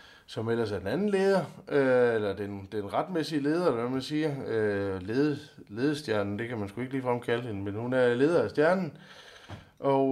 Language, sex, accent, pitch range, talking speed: Danish, male, native, 95-120 Hz, 190 wpm